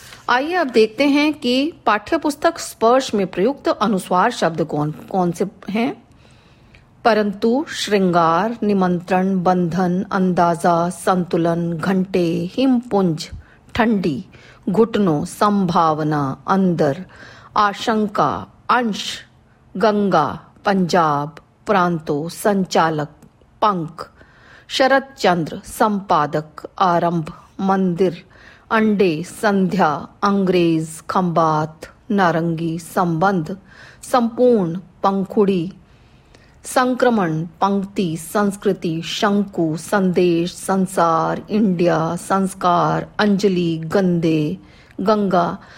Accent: native